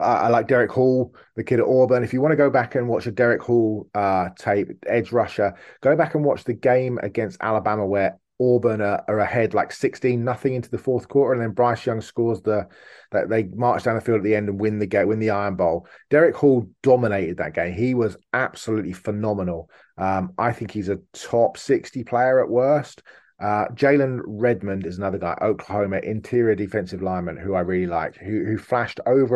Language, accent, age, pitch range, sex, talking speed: English, British, 30-49, 100-120 Hz, male, 215 wpm